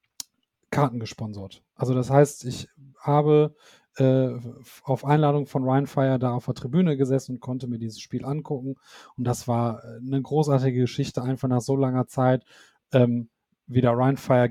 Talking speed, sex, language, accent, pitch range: 155 wpm, male, German, German, 125-150 Hz